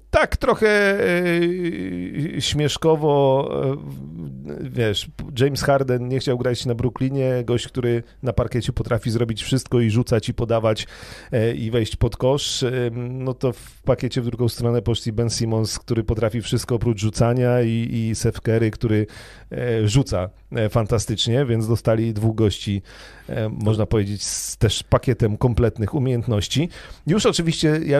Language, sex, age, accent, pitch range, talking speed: Polish, male, 40-59, native, 110-125 Hz, 135 wpm